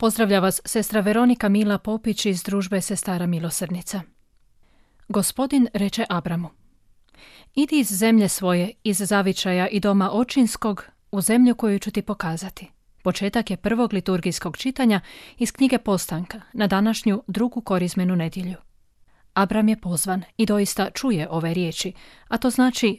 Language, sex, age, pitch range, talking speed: Croatian, female, 30-49, 180-225 Hz, 135 wpm